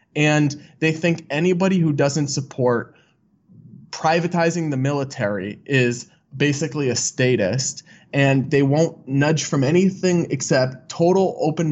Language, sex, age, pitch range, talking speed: English, male, 20-39, 125-165 Hz, 120 wpm